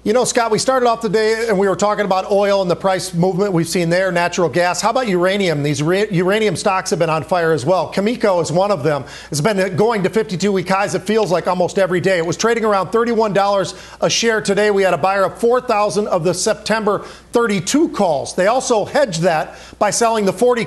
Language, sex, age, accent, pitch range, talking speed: English, male, 40-59, American, 185-220 Hz, 230 wpm